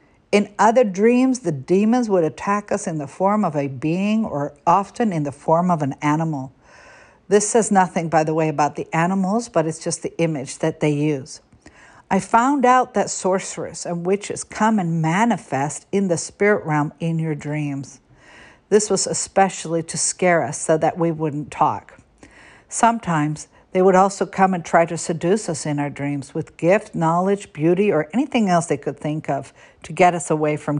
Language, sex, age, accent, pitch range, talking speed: English, female, 60-79, American, 155-200 Hz, 185 wpm